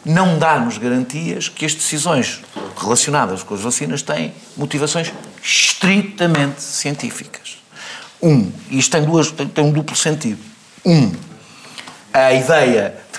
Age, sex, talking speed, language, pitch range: 50-69, male, 120 wpm, Portuguese, 135-185 Hz